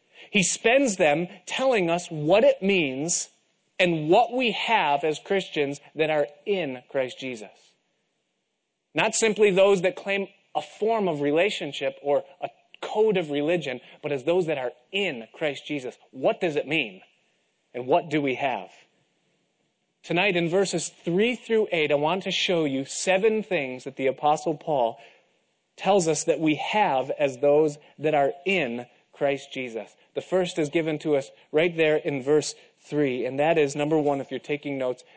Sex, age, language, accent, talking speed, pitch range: male, 30-49, English, American, 170 wpm, 140-185 Hz